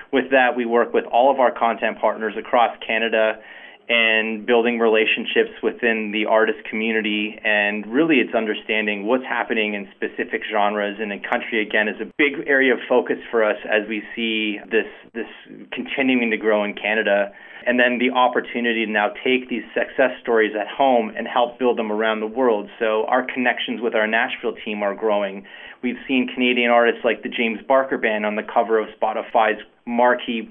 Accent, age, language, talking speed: American, 30-49, English, 185 wpm